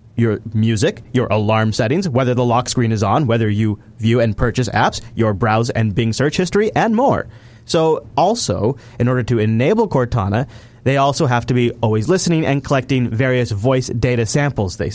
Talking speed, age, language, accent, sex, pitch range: 185 wpm, 30-49, English, American, male, 115-150 Hz